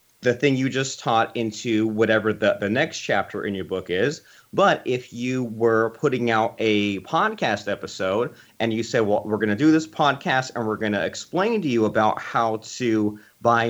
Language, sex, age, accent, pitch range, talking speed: English, male, 30-49, American, 110-135 Hz, 195 wpm